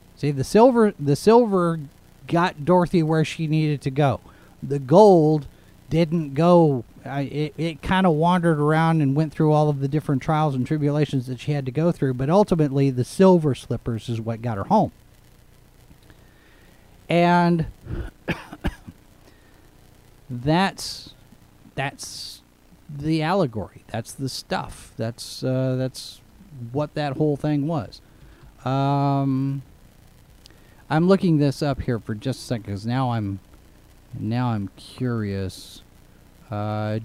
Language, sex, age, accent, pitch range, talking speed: English, male, 40-59, American, 115-155 Hz, 130 wpm